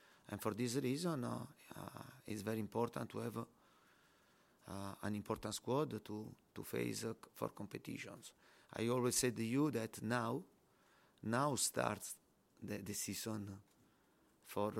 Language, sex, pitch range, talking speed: English, male, 110-130 Hz, 140 wpm